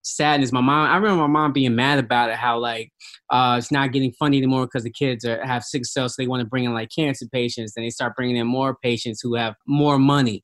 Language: English